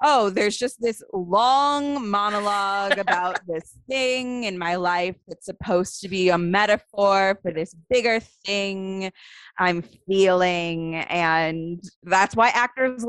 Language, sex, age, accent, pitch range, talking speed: English, female, 20-39, American, 160-205 Hz, 130 wpm